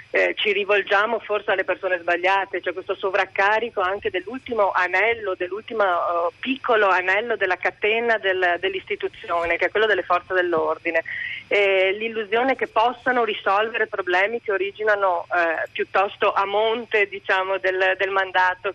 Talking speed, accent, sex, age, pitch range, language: 140 wpm, native, female, 30-49, 185-220 Hz, Italian